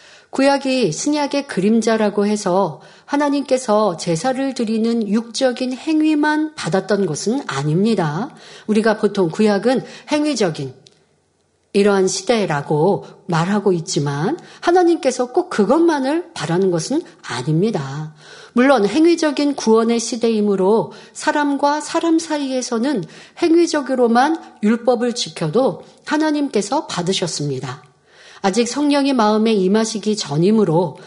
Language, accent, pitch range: Korean, native, 195-285 Hz